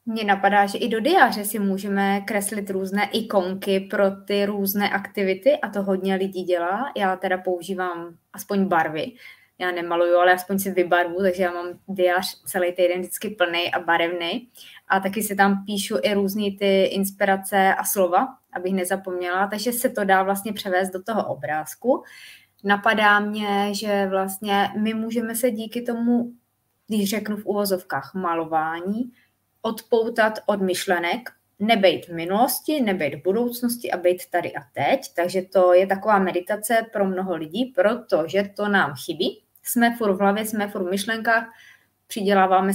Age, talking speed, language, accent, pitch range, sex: 20-39, 155 wpm, Czech, native, 180-220 Hz, female